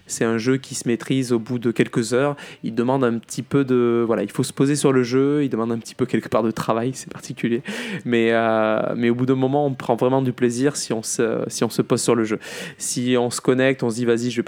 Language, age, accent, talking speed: French, 20-39, French, 280 wpm